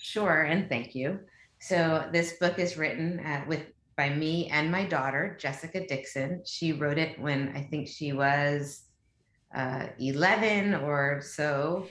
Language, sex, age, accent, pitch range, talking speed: English, female, 30-49, American, 135-155 Hz, 150 wpm